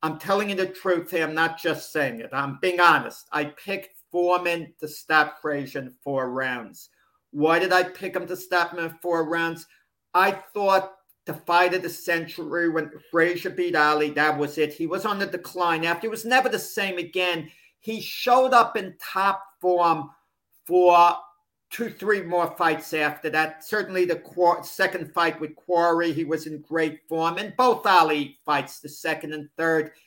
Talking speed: 185 wpm